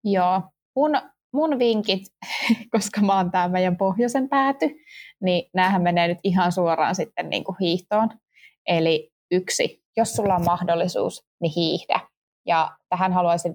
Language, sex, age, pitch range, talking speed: Finnish, female, 20-39, 175-225 Hz, 135 wpm